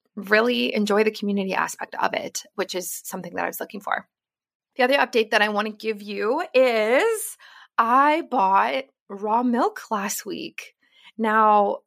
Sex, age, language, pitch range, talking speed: female, 20-39, English, 195-240 Hz, 160 wpm